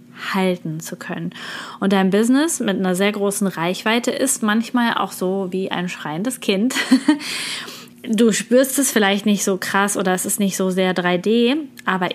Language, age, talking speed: German, 20-39, 170 wpm